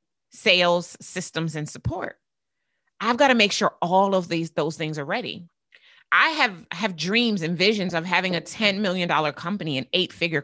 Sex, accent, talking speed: female, American, 180 wpm